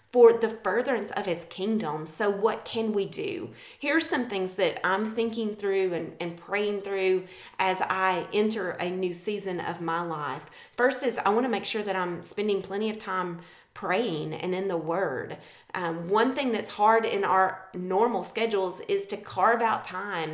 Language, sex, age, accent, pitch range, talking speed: English, female, 30-49, American, 175-210 Hz, 185 wpm